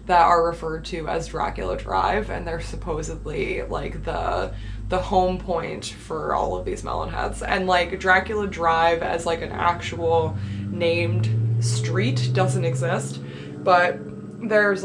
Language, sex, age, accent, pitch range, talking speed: English, female, 20-39, American, 170-215 Hz, 135 wpm